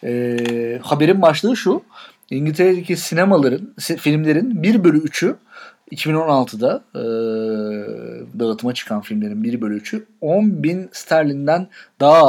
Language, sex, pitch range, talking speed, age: Turkish, male, 130-185 Hz, 100 wpm, 40-59